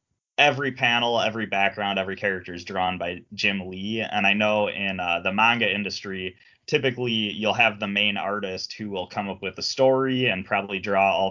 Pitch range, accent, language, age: 95-120 Hz, American, English, 20-39